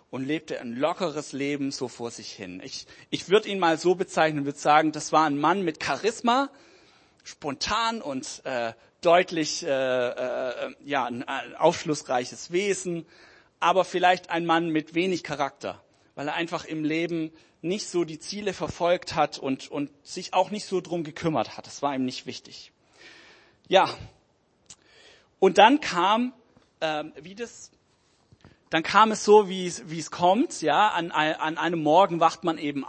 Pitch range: 140-175 Hz